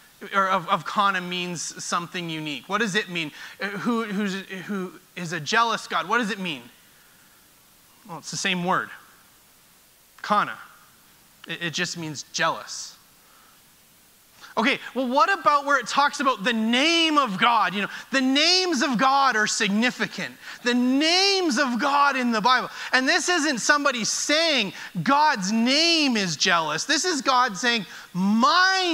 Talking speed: 155 wpm